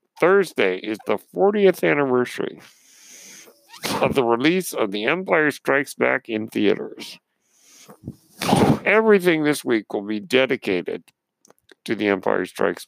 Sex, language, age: male, English, 50-69